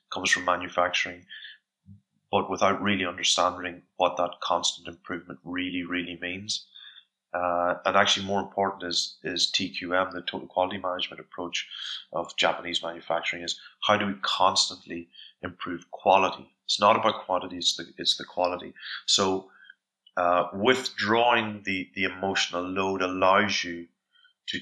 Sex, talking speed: male, 135 wpm